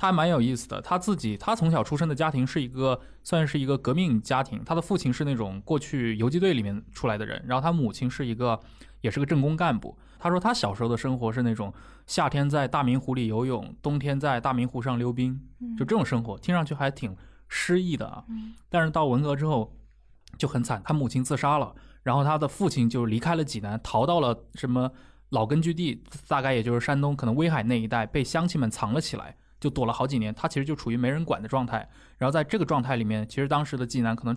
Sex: male